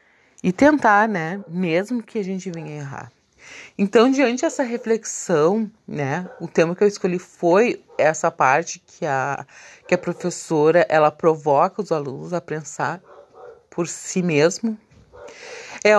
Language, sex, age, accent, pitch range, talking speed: Portuguese, female, 30-49, Brazilian, 175-225 Hz, 140 wpm